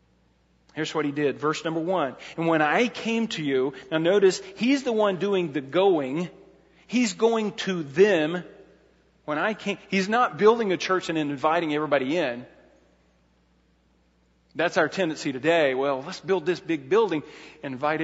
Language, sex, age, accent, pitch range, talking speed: English, male, 40-59, American, 145-195 Hz, 165 wpm